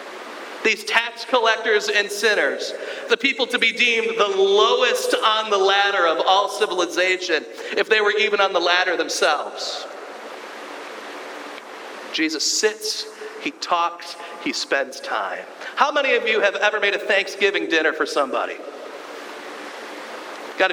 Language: English